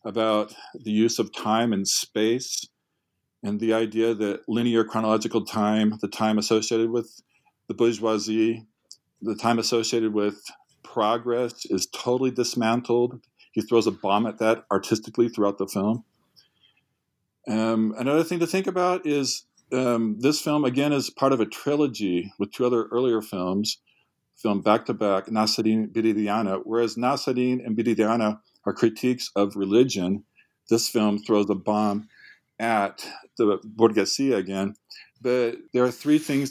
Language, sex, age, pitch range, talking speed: English, male, 50-69, 110-125 Hz, 140 wpm